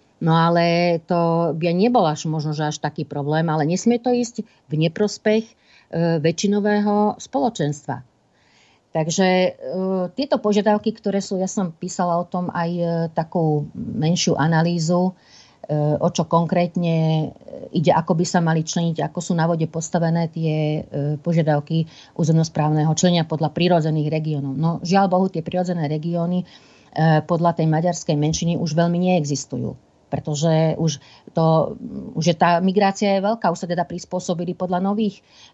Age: 50-69